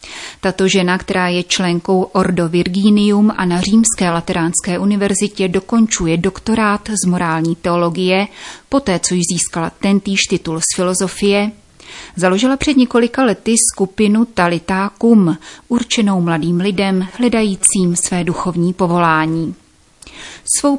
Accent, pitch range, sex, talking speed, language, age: native, 175-215 Hz, female, 115 wpm, Czech, 30-49